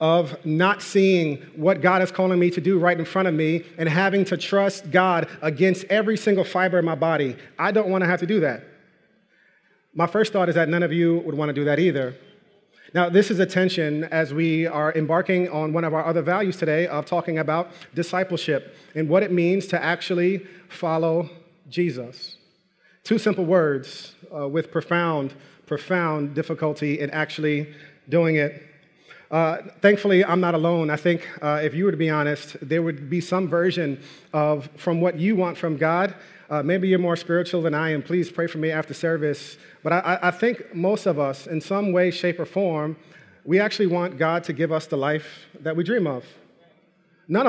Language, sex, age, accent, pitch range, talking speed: English, male, 30-49, American, 155-185 Hz, 195 wpm